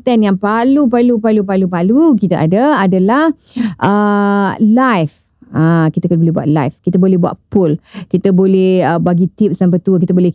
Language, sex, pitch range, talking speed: Indonesian, female, 185-235 Hz, 170 wpm